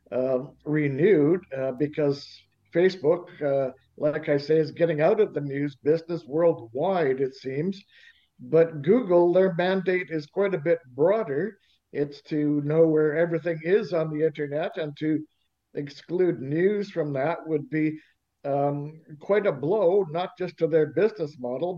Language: English